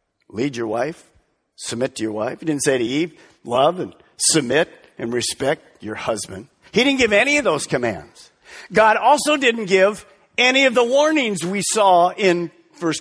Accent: American